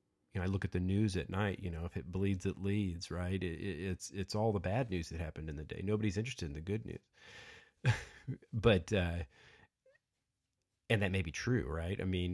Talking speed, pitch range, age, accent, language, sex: 205 wpm, 85-105 Hz, 40-59, American, English, male